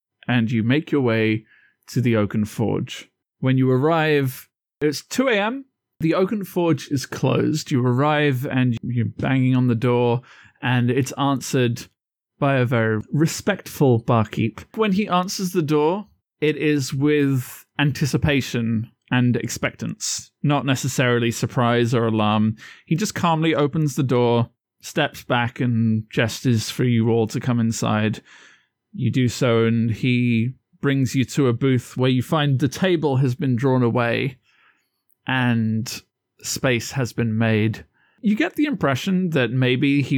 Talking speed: 145 wpm